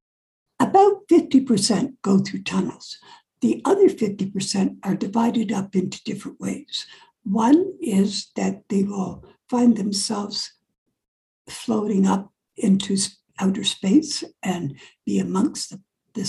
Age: 60-79